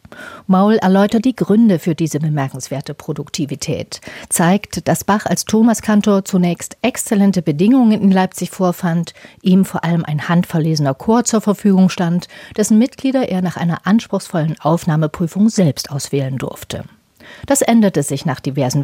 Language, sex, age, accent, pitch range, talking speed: German, female, 40-59, German, 155-210 Hz, 135 wpm